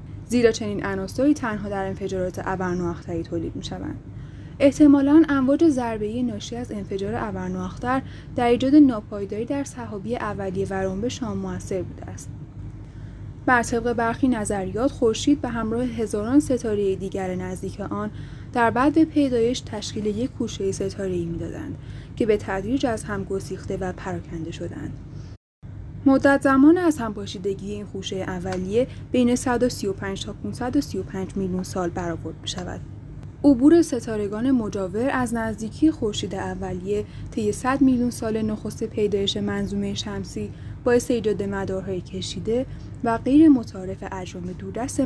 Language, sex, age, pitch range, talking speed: Persian, female, 10-29, 185-250 Hz, 130 wpm